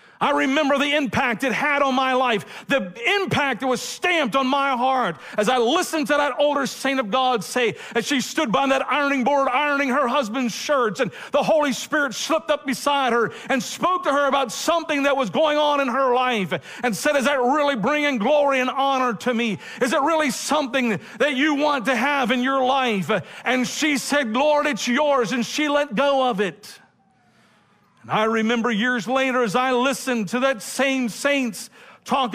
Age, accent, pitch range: 50-69, American, 240-280 Hz